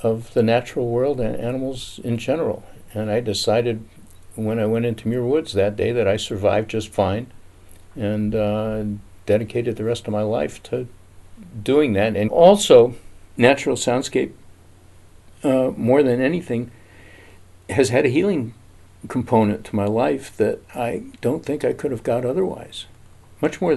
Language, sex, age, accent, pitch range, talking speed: English, male, 60-79, American, 100-115 Hz, 155 wpm